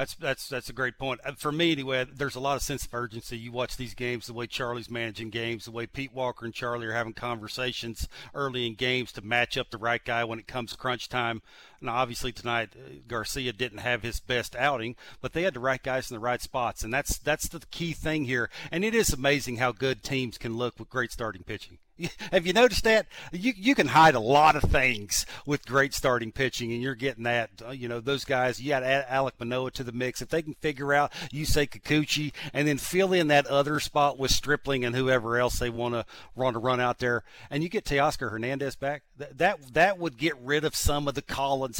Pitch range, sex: 120-150 Hz, male